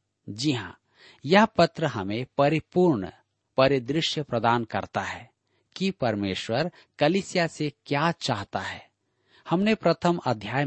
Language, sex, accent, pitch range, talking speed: Hindi, male, native, 110-165 Hz, 110 wpm